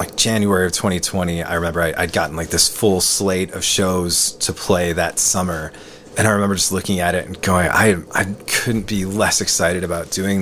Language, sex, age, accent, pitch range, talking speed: English, male, 30-49, American, 90-105 Hz, 205 wpm